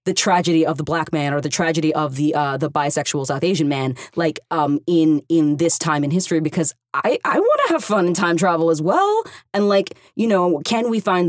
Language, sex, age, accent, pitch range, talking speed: English, female, 20-39, American, 150-175 Hz, 230 wpm